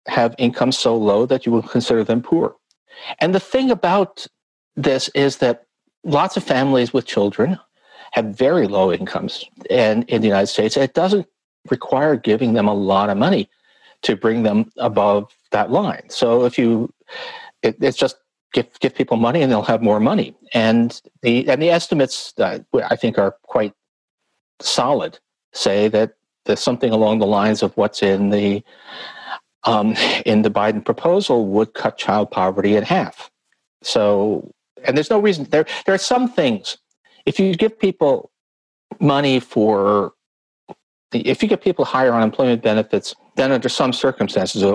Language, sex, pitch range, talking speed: English, male, 105-140 Hz, 170 wpm